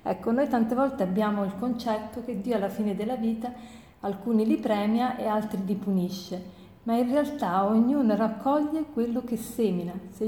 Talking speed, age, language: 170 wpm, 50-69, Italian